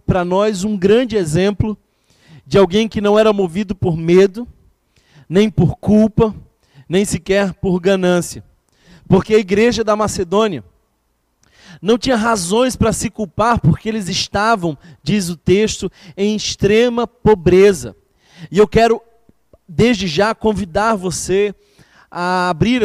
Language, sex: Portuguese, male